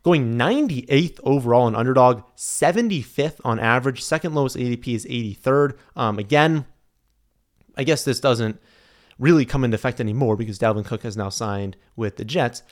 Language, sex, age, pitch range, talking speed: English, male, 30-49, 115-150 Hz, 155 wpm